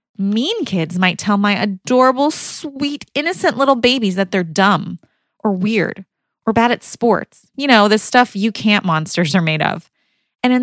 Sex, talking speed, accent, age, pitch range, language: female, 175 wpm, American, 20-39, 175-240 Hz, English